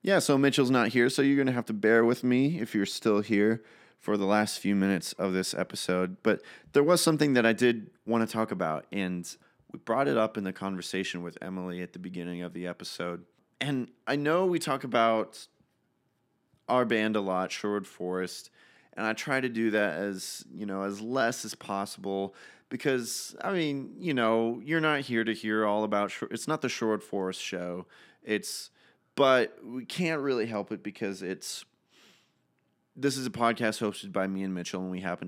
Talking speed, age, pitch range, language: 195 wpm, 30-49, 95-125 Hz, English